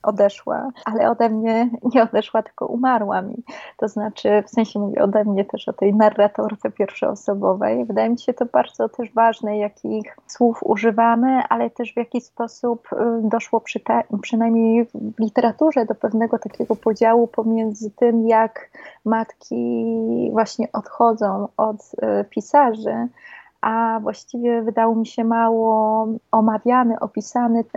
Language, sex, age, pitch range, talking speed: Polish, female, 20-39, 220-250 Hz, 130 wpm